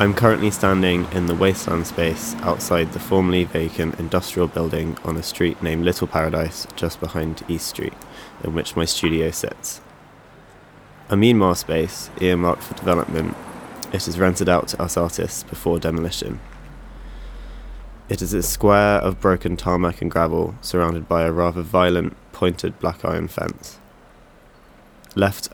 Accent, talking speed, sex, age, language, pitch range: British, 145 wpm, male, 20-39, English, 85-95 Hz